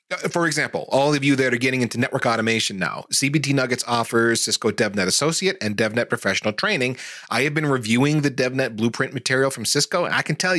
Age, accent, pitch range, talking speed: 30-49, American, 115-145 Hz, 200 wpm